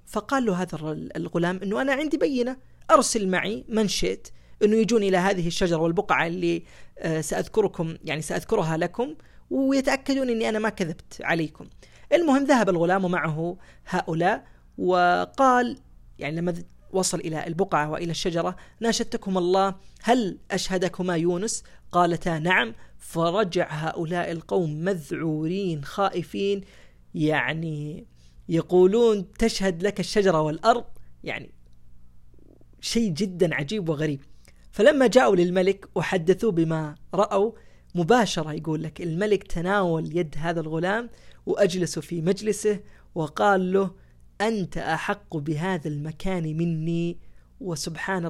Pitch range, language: 160-200 Hz, Arabic